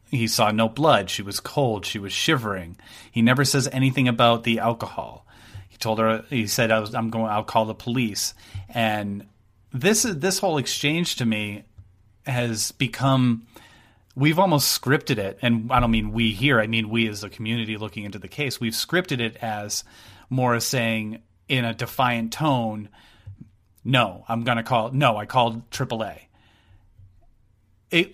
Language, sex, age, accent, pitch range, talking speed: English, male, 30-49, American, 110-130 Hz, 170 wpm